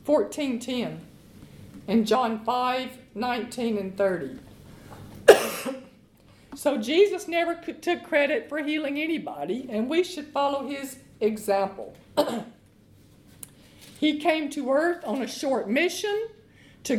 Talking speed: 105 wpm